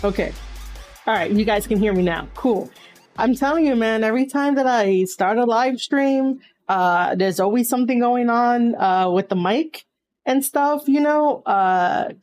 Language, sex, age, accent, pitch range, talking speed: English, female, 30-49, American, 185-255 Hz, 180 wpm